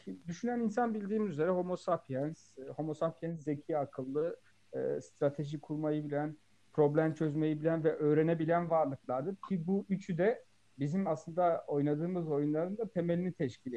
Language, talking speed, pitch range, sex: Turkish, 135 wpm, 140-175 Hz, male